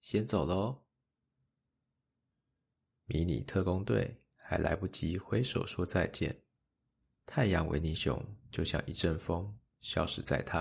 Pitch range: 85-115 Hz